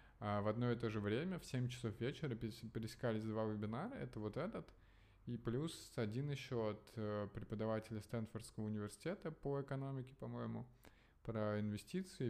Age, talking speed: 20-39, 140 wpm